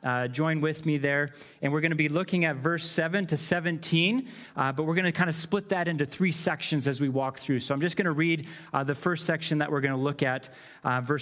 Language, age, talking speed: English, 30-49, 265 wpm